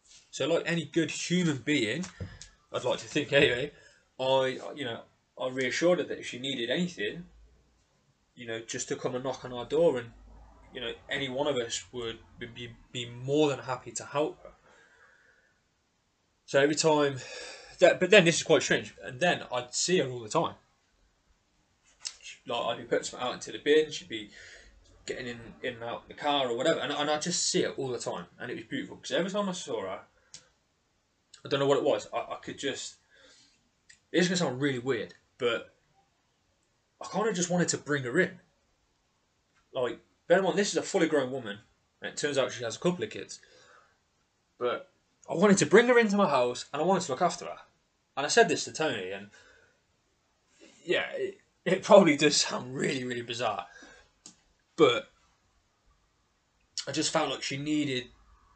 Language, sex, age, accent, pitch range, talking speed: English, male, 20-39, British, 120-170 Hz, 195 wpm